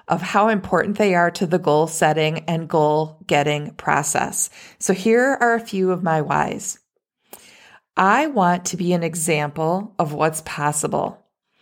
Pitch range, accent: 160-205 Hz, American